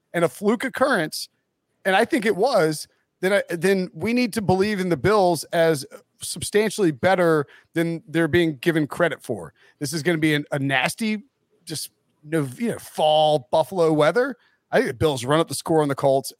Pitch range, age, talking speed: 140-180 Hz, 30-49, 195 wpm